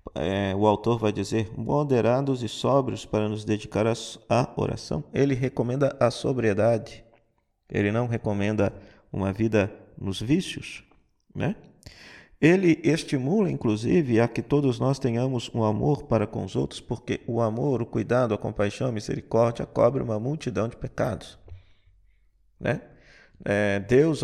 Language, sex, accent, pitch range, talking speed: Portuguese, male, Brazilian, 105-135 Hz, 135 wpm